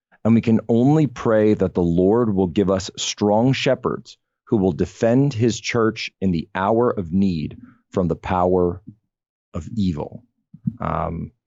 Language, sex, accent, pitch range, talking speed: English, male, American, 90-105 Hz, 150 wpm